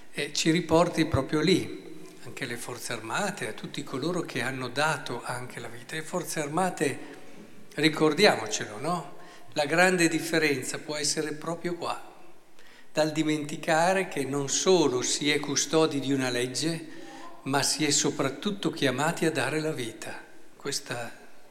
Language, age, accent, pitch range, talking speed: Italian, 50-69, native, 135-165 Hz, 140 wpm